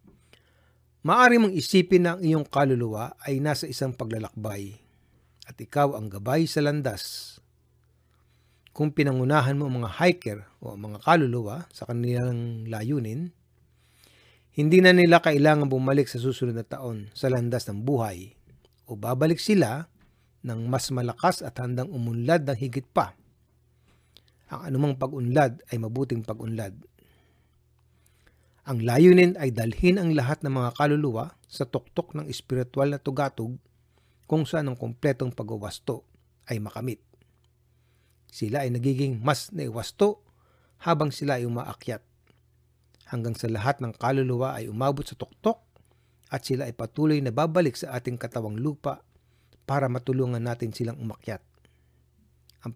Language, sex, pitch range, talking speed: Filipino, male, 110-145 Hz, 135 wpm